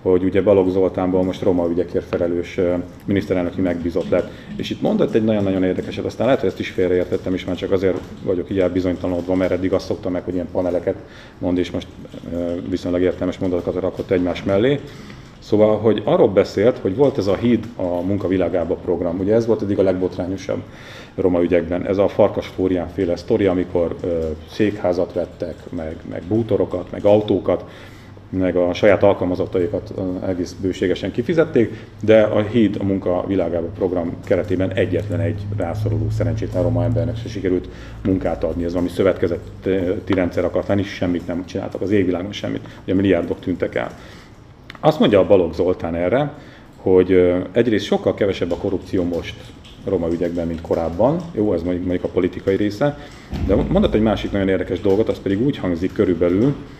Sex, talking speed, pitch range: male, 165 wpm, 90-105 Hz